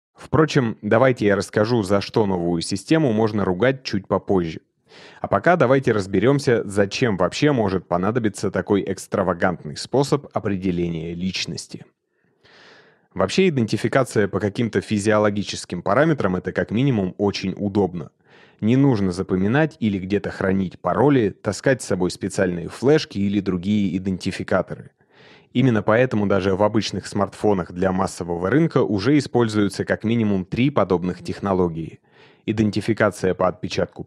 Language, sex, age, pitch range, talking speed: Russian, male, 30-49, 95-120 Hz, 125 wpm